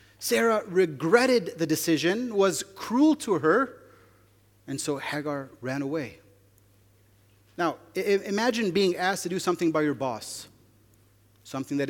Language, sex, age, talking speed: English, male, 30-49, 125 wpm